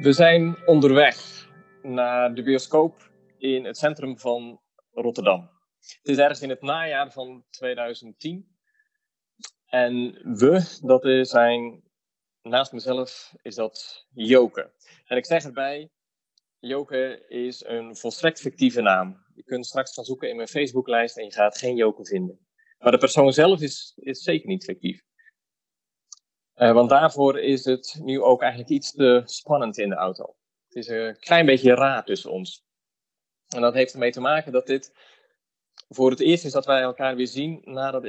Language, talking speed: Dutch, 160 wpm